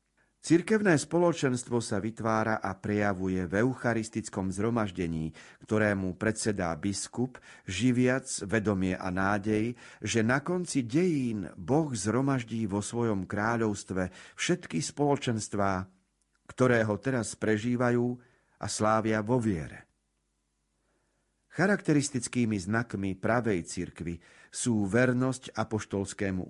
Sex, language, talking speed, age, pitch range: male, Slovak, 95 wpm, 40-59, 95-125 Hz